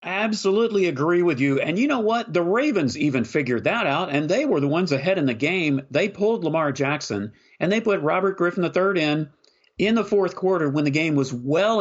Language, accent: English, American